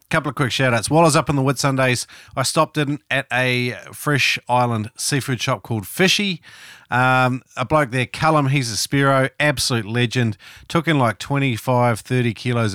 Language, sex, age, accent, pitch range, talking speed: English, male, 40-59, Australian, 110-135 Hz, 180 wpm